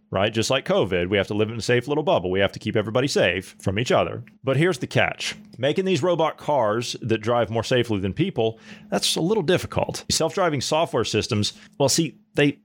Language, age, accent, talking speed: English, 40-59, American, 220 wpm